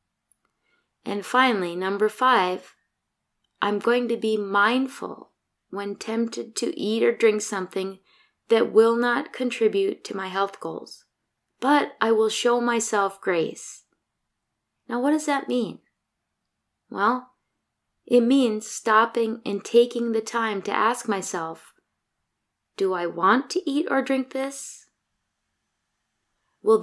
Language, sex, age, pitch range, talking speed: English, female, 20-39, 200-245 Hz, 125 wpm